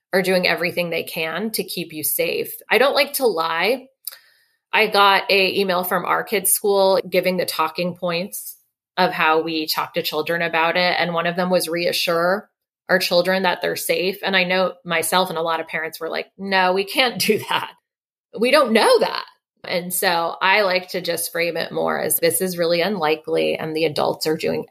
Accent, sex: American, female